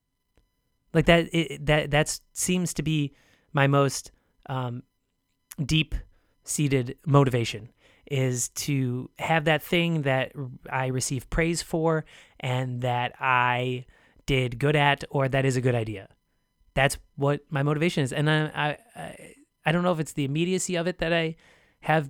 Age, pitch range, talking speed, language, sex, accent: 30-49, 130-160 Hz, 150 wpm, English, male, American